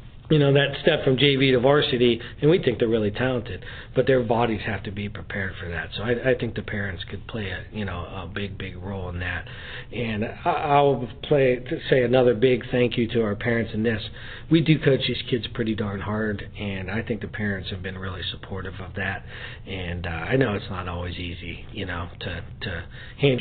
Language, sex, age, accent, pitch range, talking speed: English, male, 50-69, American, 100-135 Hz, 220 wpm